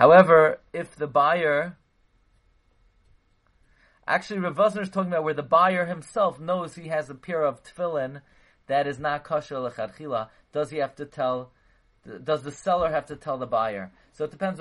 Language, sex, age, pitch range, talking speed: English, male, 30-49, 125-170 Hz, 170 wpm